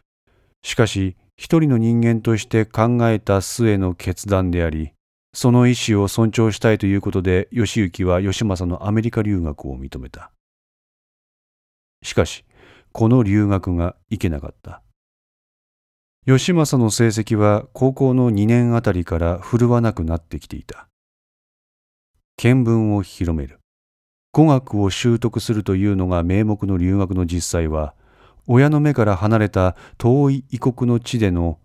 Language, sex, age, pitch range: Japanese, male, 40-59, 90-120 Hz